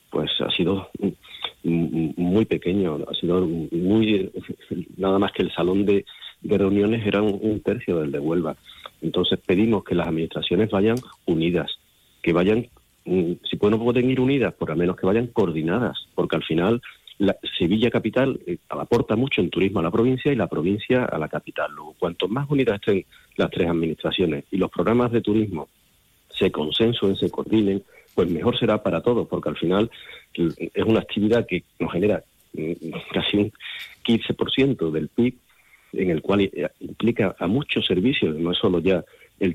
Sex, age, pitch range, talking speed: male, 50-69, 80-110 Hz, 165 wpm